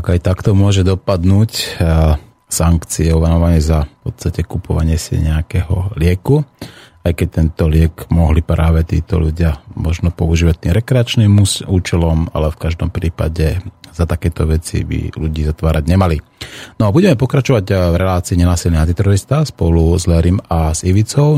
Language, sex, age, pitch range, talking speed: Slovak, male, 30-49, 85-110 Hz, 140 wpm